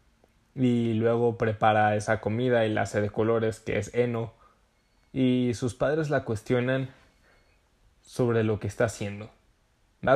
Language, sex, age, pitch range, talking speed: Spanish, male, 10-29, 105-125 Hz, 140 wpm